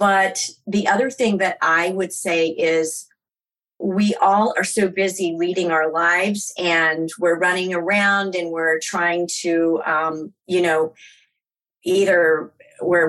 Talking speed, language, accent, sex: 140 wpm, English, American, female